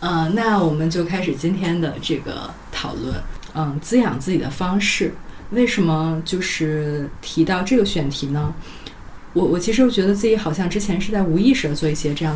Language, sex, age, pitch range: Chinese, female, 20-39, 155-195 Hz